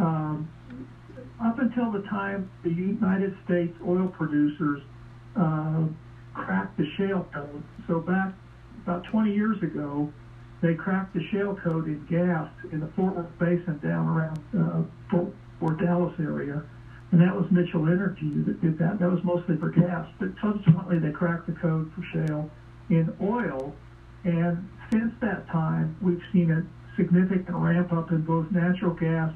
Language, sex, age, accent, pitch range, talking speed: English, male, 60-79, American, 155-185 Hz, 155 wpm